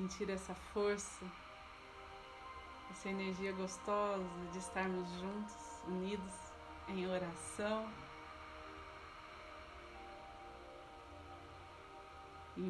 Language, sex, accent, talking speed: Portuguese, female, Brazilian, 60 wpm